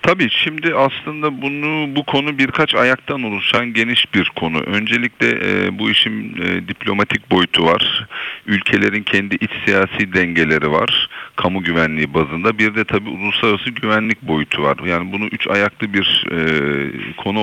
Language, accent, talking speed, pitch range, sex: Turkish, native, 150 wpm, 85-105 Hz, male